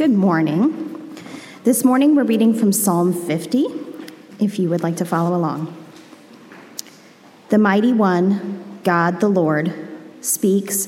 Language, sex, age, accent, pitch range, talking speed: English, female, 30-49, American, 175-215 Hz, 125 wpm